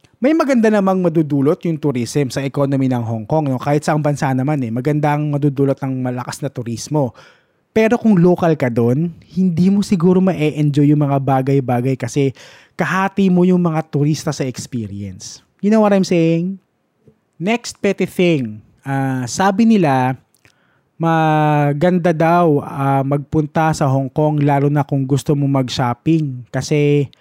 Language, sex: Filipino, male